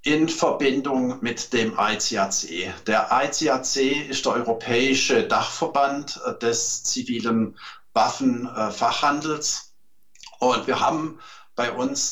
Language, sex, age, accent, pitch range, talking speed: German, male, 50-69, German, 115-135 Hz, 95 wpm